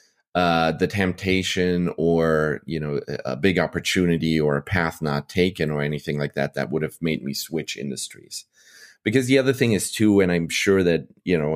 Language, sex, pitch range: English, male, 75-90 Hz